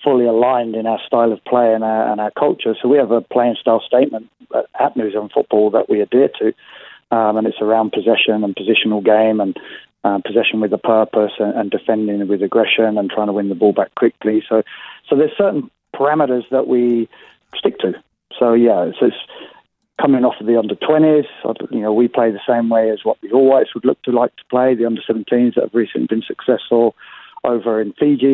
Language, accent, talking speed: English, British, 215 wpm